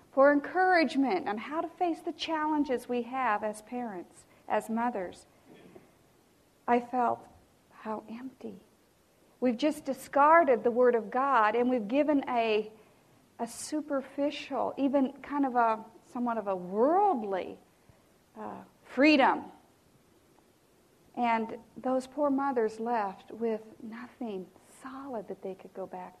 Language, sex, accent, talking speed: English, female, American, 125 wpm